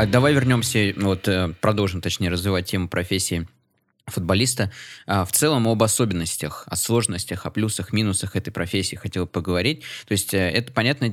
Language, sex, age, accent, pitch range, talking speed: Russian, male, 20-39, native, 90-110 Hz, 140 wpm